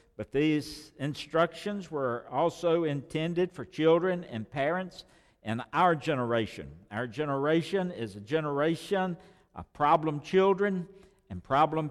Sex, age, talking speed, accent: male, 60-79, 115 wpm, American